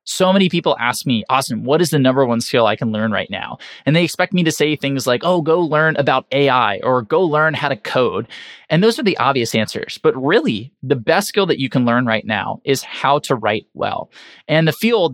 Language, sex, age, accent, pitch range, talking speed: English, male, 20-39, American, 125-155 Hz, 240 wpm